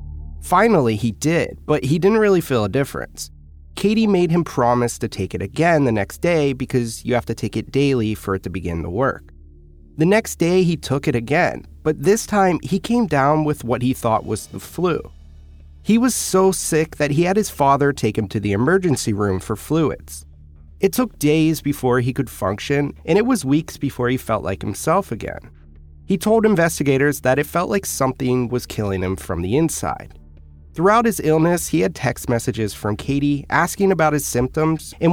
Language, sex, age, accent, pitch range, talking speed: English, male, 30-49, American, 95-165 Hz, 200 wpm